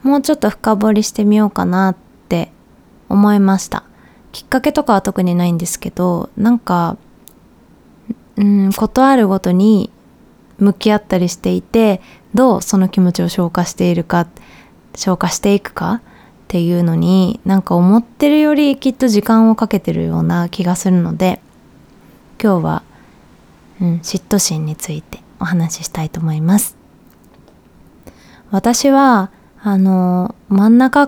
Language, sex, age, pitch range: Japanese, female, 20-39, 180-225 Hz